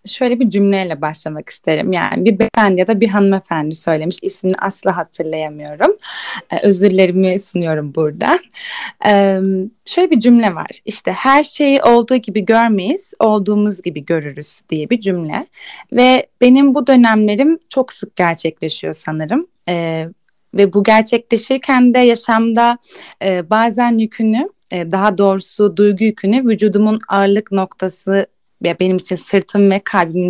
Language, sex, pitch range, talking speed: Turkish, female, 180-235 Hz, 135 wpm